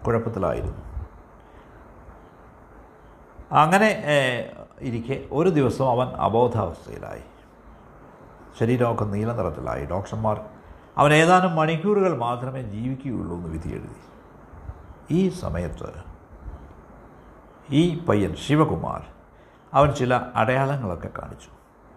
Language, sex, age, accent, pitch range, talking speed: Malayalam, male, 60-79, native, 95-140 Hz, 65 wpm